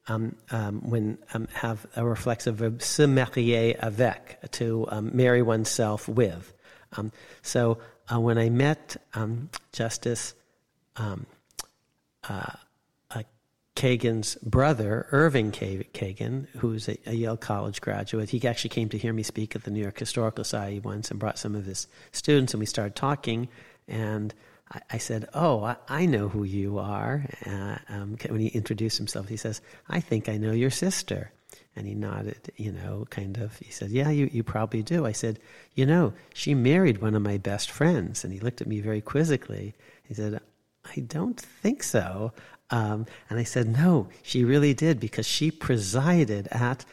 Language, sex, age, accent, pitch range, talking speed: English, male, 50-69, American, 105-125 Hz, 170 wpm